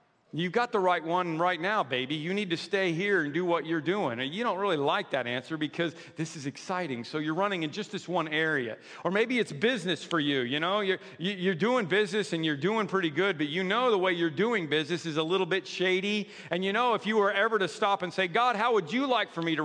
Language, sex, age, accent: English, male, 40-59, American